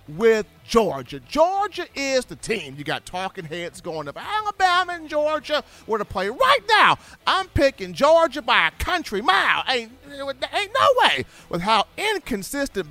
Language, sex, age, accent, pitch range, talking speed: English, male, 40-59, American, 140-220 Hz, 160 wpm